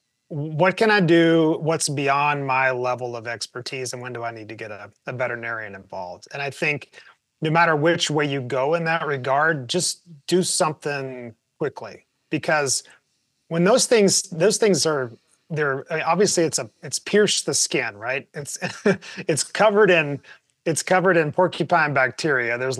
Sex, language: male, English